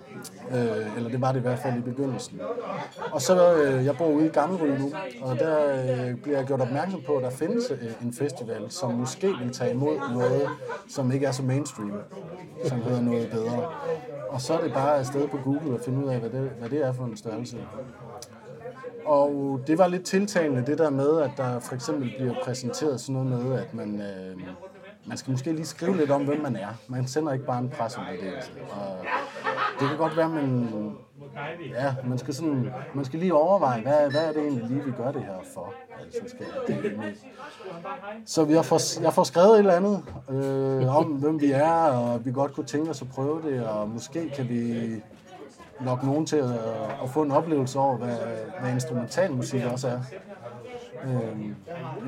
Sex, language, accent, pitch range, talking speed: male, Danish, native, 125-160 Hz, 195 wpm